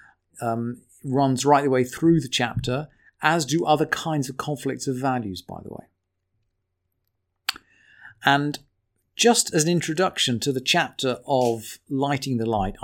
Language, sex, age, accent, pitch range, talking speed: English, male, 40-59, British, 115-155 Hz, 145 wpm